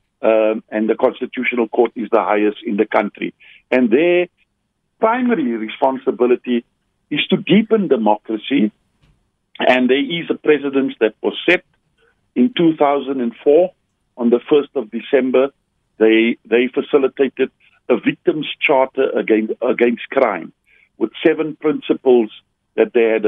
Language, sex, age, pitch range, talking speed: English, male, 50-69, 120-165 Hz, 125 wpm